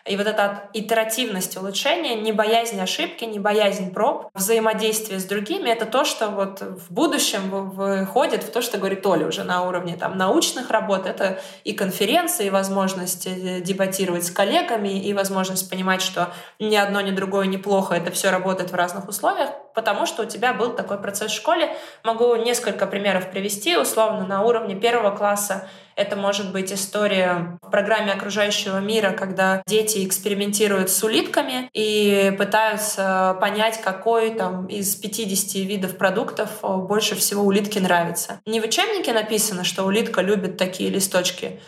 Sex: female